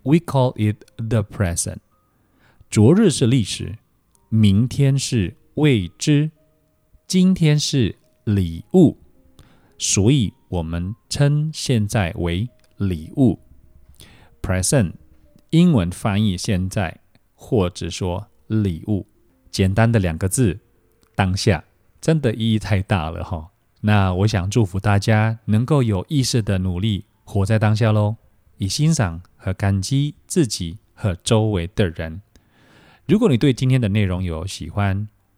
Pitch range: 95-120 Hz